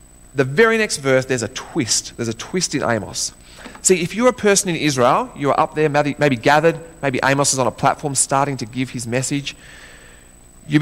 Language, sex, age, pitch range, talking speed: English, male, 30-49, 115-165 Hz, 200 wpm